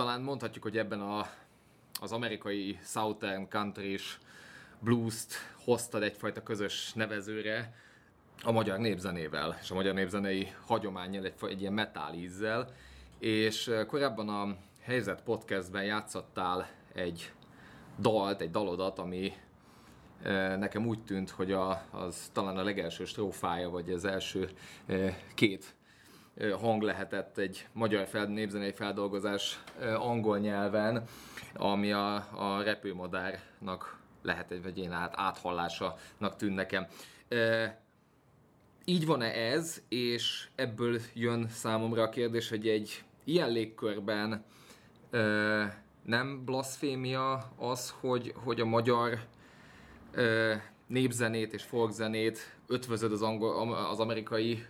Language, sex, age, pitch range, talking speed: Hungarian, male, 20-39, 95-115 Hz, 110 wpm